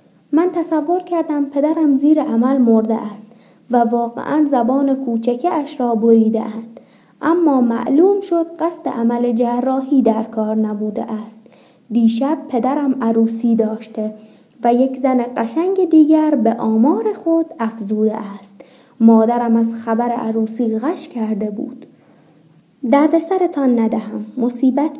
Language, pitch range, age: Persian, 230-275 Hz, 20-39